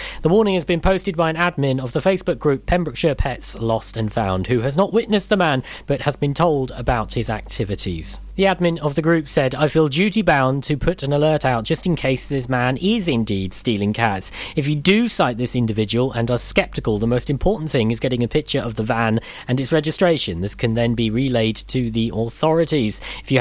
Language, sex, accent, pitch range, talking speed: English, male, British, 120-170 Hz, 225 wpm